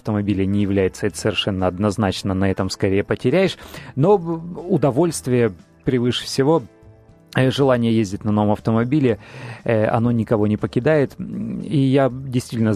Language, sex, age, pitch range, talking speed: Russian, male, 30-49, 110-135 Hz, 120 wpm